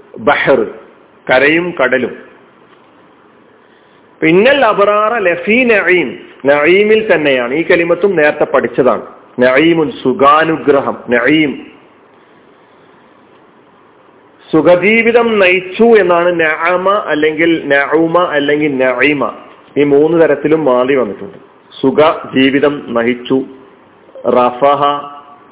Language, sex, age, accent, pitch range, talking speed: Malayalam, male, 40-59, native, 135-180 Hz, 55 wpm